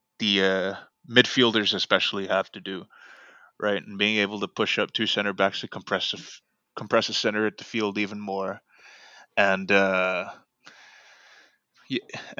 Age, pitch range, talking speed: 20-39, 95-105 Hz, 150 wpm